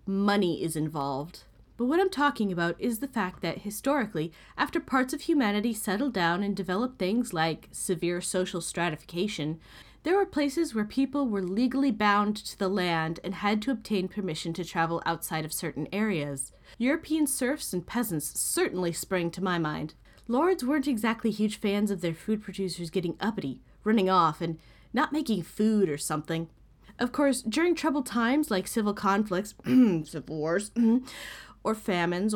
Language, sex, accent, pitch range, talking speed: English, female, American, 175-260 Hz, 160 wpm